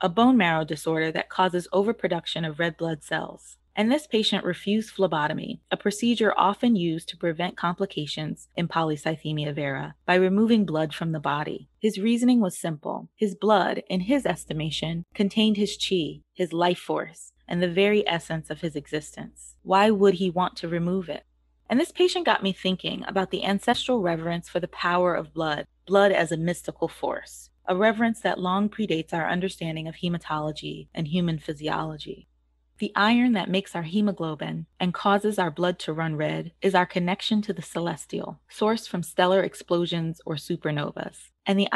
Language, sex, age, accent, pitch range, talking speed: English, female, 20-39, American, 160-200 Hz, 170 wpm